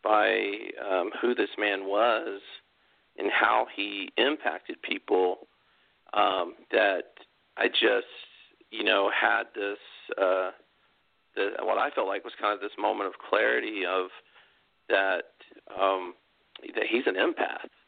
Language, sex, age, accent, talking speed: English, male, 40-59, American, 130 wpm